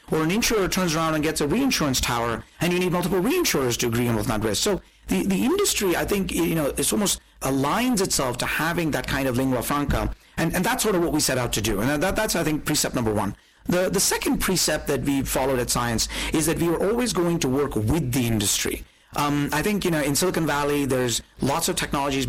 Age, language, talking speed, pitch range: 40-59, English, 245 wpm, 130-175 Hz